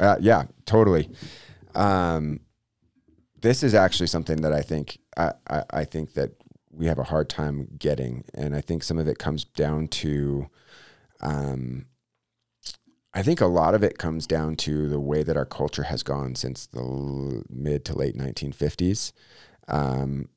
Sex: male